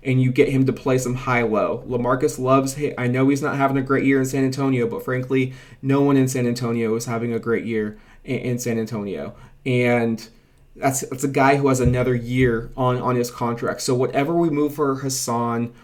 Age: 20-39